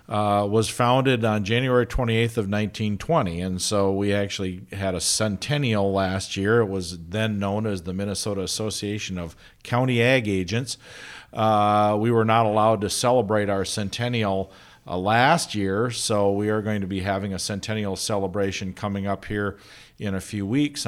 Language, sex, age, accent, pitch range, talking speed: English, male, 50-69, American, 95-115 Hz, 165 wpm